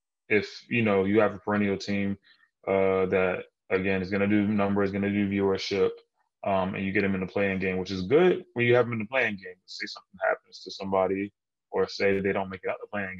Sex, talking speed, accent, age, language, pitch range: male, 255 wpm, American, 20-39, English, 95-105 Hz